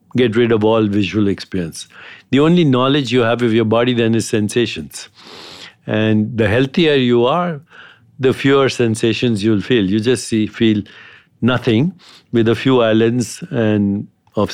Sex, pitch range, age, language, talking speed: male, 110-130 Hz, 60-79, English, 155 wpm